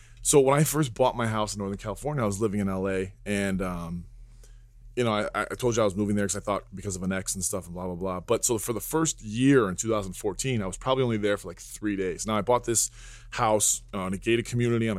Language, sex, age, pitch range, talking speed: English, male, 20-39, 100-120 Hz, 270 wpm